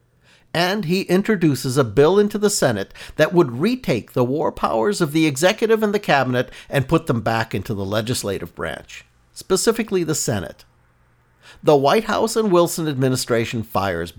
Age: 50-69